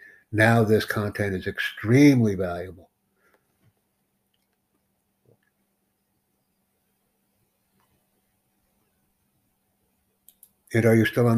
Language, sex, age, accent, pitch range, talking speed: English, male, 60-79, American, 95-115 Hz, 60 wpm